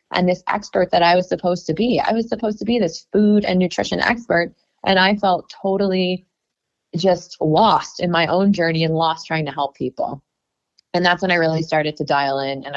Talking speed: 210 wpm